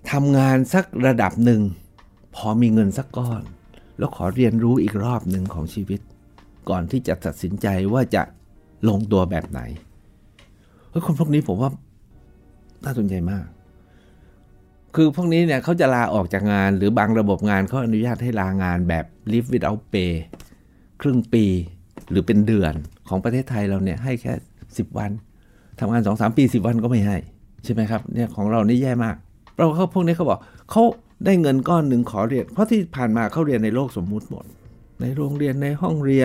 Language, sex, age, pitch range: Thai, male, 60-79, 95-130 Hz